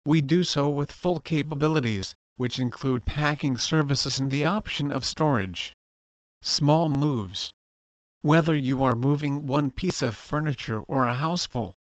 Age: 50-69